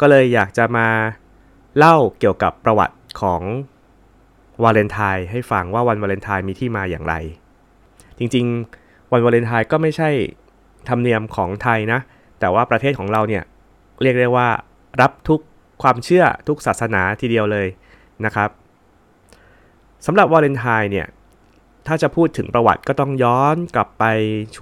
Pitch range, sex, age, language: 100-130 Hz, male, 20-39, Thai